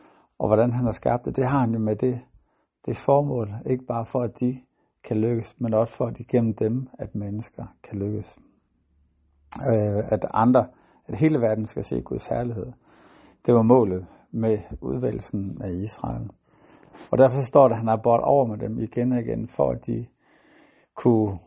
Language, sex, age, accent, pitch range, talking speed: Danish, male, 60-79, native, 105-125 Hz, 180 wpm